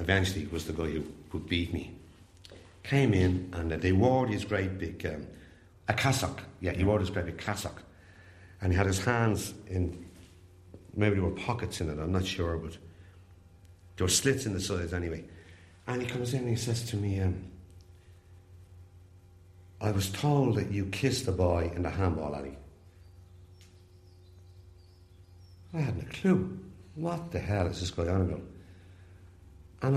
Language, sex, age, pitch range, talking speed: English, male, 60-79, 90-110 Hz, 170 wpm